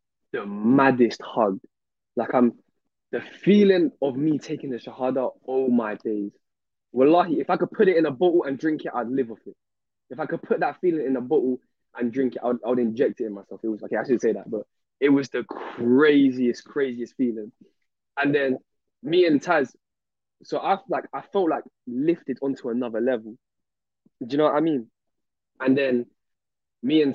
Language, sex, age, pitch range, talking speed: English, male, 20-39, 120-150 Hz, 205 wpm